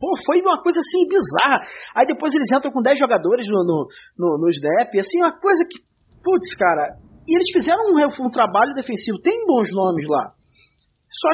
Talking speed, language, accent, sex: 190 wpm, Portuguese, Brazilian, male